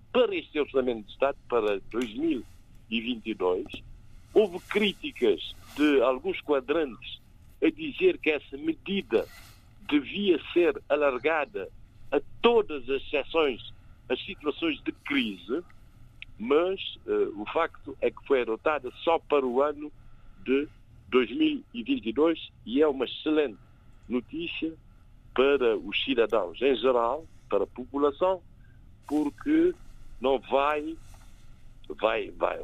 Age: 60-79